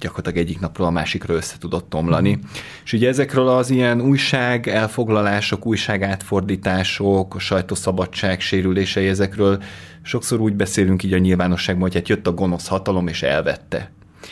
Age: 30-49